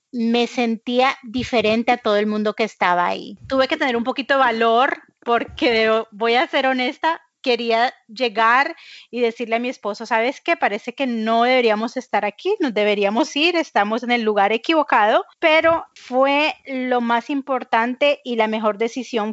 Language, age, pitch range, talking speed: English, 30-49, 220-260 Hz, 170 wpm